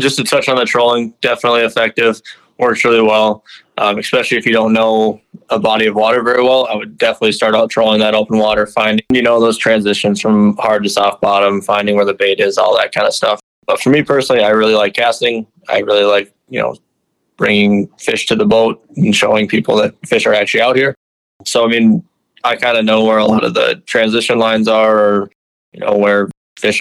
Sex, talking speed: male, 220 wpm